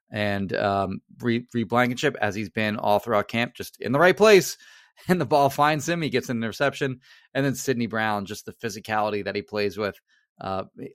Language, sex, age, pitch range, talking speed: English, male, 30-49, 105-130 Hz, 195 wpm